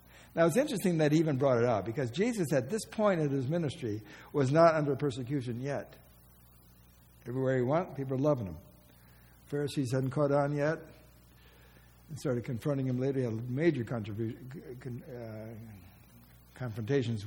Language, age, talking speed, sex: English, 60-79, 145 wpm, male